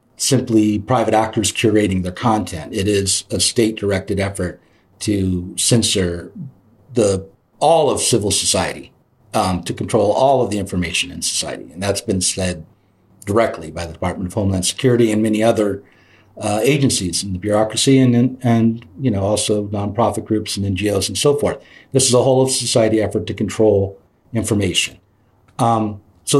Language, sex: English, male